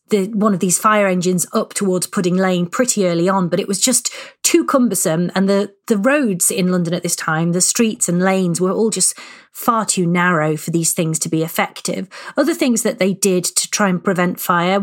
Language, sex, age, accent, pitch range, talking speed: English, female, 30-49, British, 175-210 Hz, 220 wpm